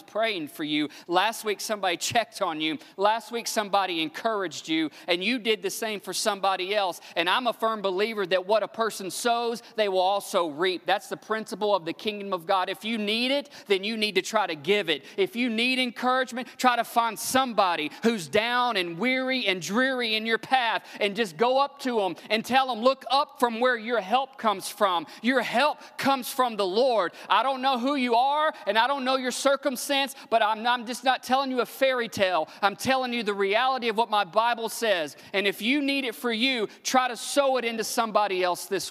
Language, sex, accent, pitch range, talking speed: English, male, American, 205-260 Hz, 220 wpm